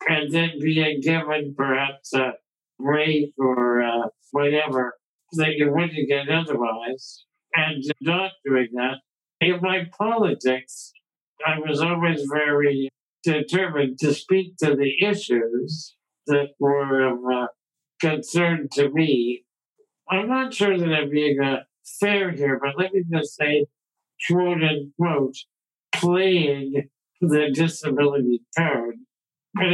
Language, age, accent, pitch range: English, 60-79, American, 135-170 Hz